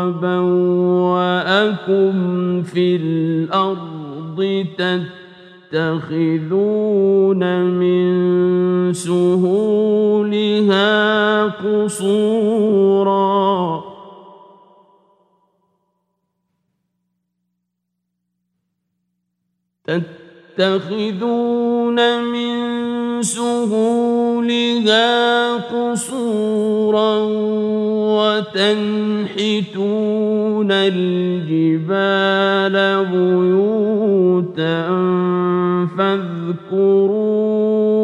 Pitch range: 180-215 Hz